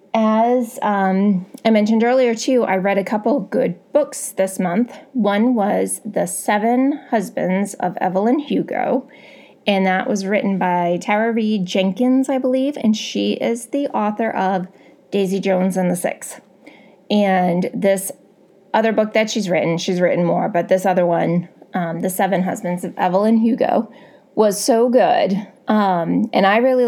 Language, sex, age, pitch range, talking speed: English, female, 20-39, 190-250 Hz, 160 wpm